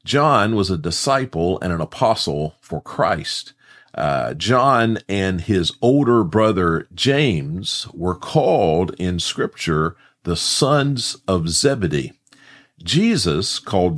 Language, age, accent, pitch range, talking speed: English, 50-69, American, 85-130 Hz, 110 wpm